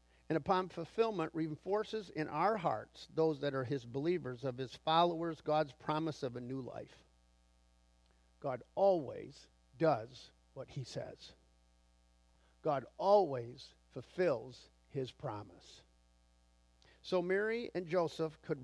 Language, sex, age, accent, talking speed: English, male, 50-69, American, 120 wpm